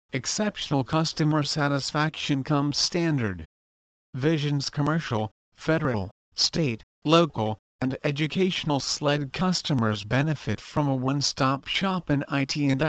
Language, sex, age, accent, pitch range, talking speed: English, male, 50-69, American, 125-155 Hz, 100 wpm